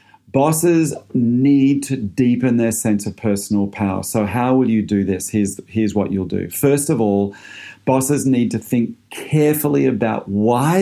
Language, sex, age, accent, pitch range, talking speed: English, male, 40-59, Australian, 105-130 Hz, 165 wpm